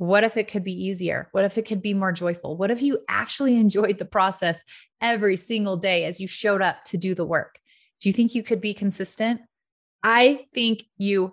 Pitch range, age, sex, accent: 185-225 Hz, 30-49, female, American